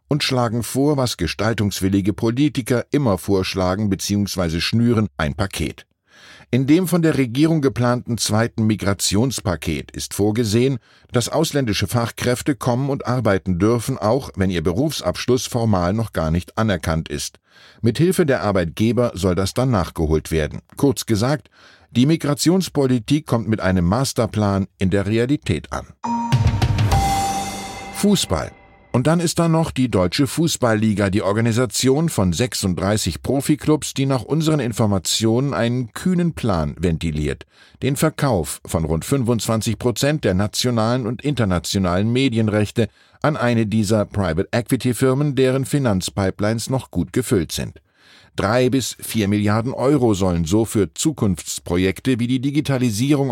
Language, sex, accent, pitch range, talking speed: German, male, German, 100-130 Hz, 130 wpm